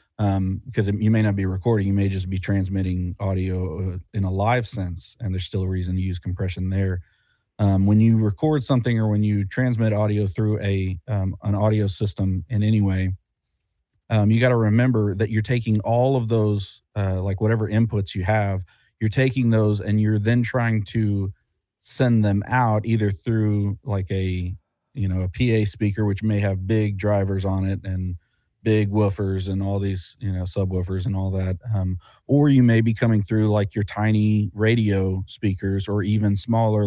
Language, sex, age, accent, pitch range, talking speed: English, male, 30-49, American, 95-110 Hz, 190 wpm